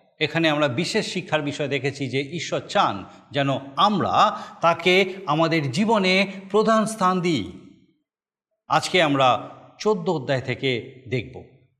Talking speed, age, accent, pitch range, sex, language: 115 wpm, 50-69, native, 140-205 Hz, male, Bengali